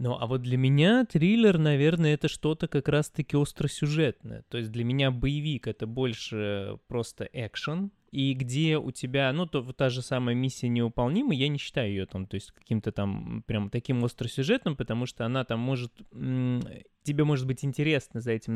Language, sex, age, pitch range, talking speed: Russian, male, 20-39, 115-145 Hz, 185 wpm